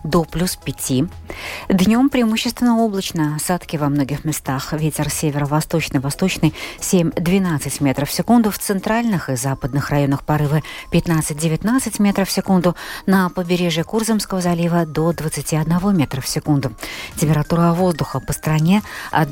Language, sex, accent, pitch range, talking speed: Russian, female, native, 145-195 Hz, 125 wpm